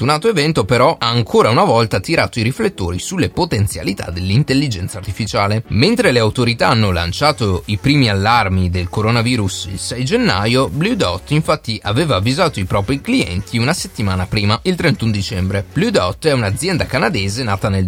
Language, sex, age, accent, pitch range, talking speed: Italian, male, 30-49, native, 95-125 Hz, 165 wpm